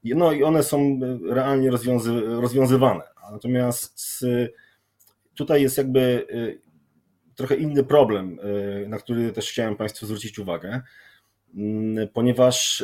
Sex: male